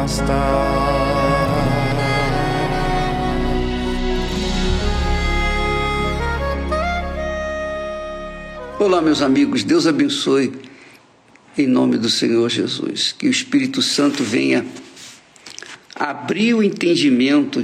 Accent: Brazilian